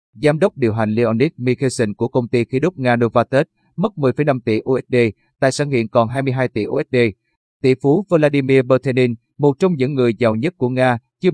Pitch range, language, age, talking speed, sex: 115-140 Hz, Vietnamese, 30-49, 195 wpm, male